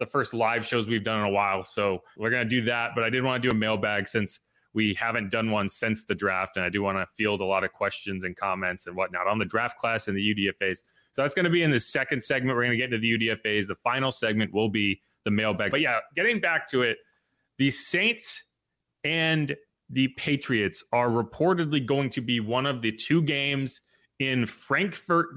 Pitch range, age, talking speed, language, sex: 110-150 Hz, 30-49, 230 wpm, English, male